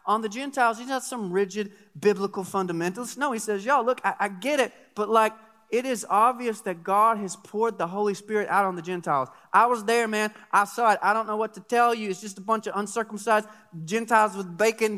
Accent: American